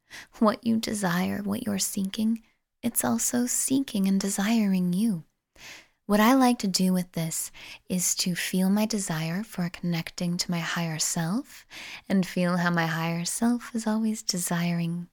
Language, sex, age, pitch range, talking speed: English, female, 10-29, 180-220 Hz, 155 wpm